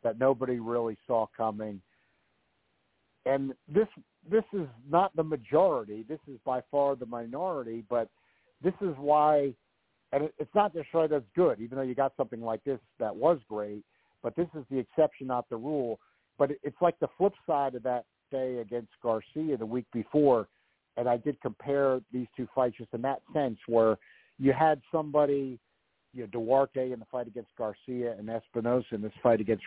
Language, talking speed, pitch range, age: English, 185 wpm, 120-150 Hz, 50-69